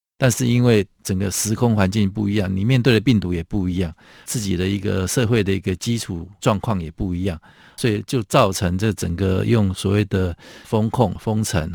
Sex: male